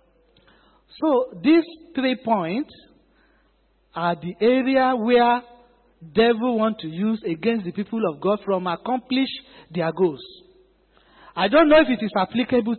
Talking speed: 130 wpm